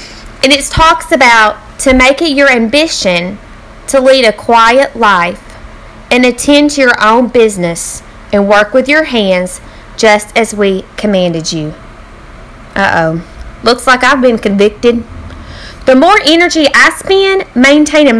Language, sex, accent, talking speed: English, female, American, 140 wpm